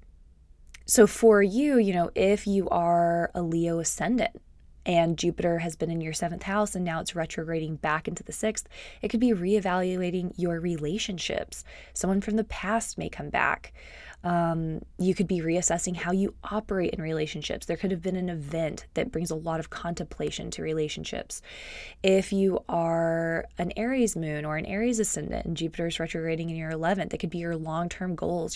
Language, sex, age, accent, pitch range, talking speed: English, female, 20-39, American, 160-190 Hz, 185 wpm